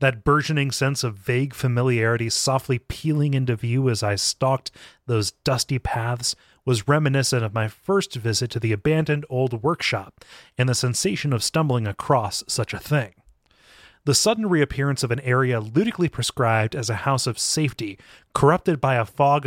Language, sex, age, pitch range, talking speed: English, male, 30-49, 120-150 Hz, 165 wpm